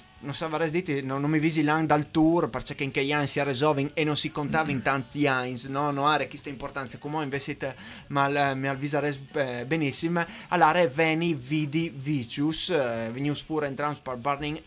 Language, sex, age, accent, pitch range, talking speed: Italian, male, 20-39, native, 135-165 Hz, 195 wpm